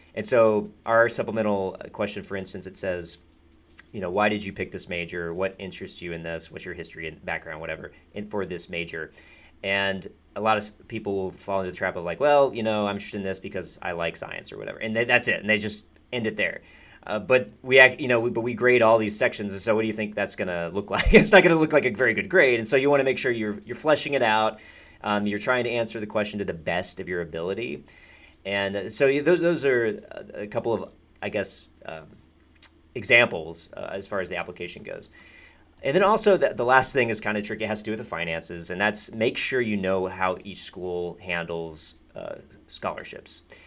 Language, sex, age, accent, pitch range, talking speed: English, male, 30-49, American, 85-110 Hz, 235 wpm